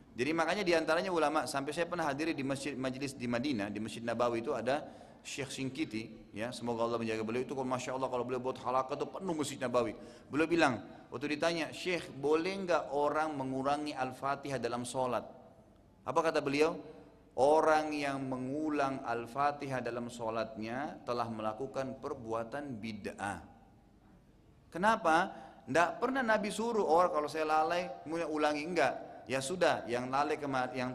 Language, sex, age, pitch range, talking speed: Indonesian, male, 30-49, 125-175 Hz, 155 wpm